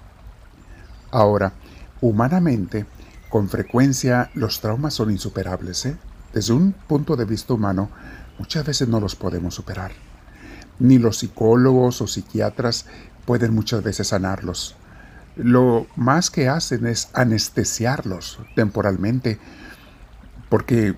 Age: 50-69